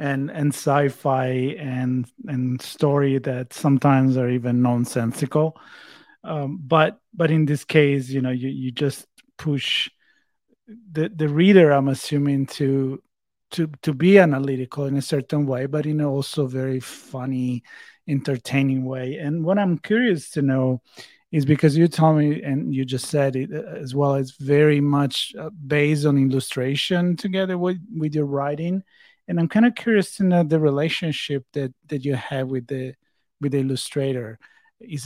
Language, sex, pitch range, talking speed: English, male, 135-160 Hz, 160 wpm